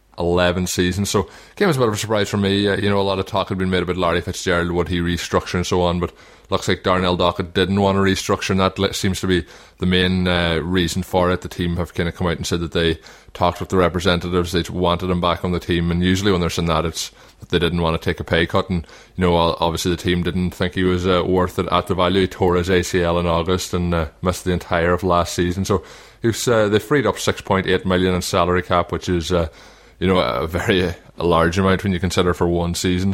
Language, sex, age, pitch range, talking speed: English, male, 20-39, 85-95 Hz, 270 wpm